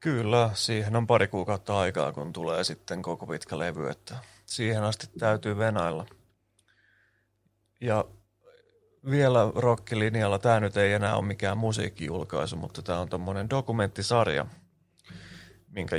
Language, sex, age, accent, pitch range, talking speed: Finnish, male, 30-49, native, 95-110 Hz, 120 wpm